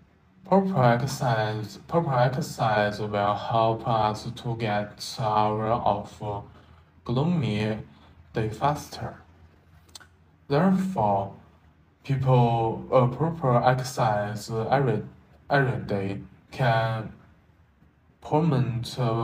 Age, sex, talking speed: 20-39, male, 75 wpm